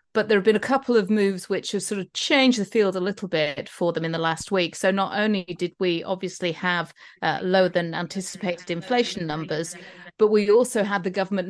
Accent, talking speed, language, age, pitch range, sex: British, 225 wpm, English, 40-59, 175-205 Hz, female